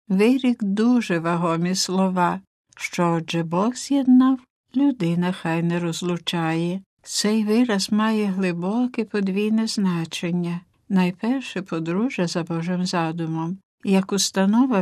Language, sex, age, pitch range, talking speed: Ukrainian, female, 60-79, 175-225 Hz, 100 wpm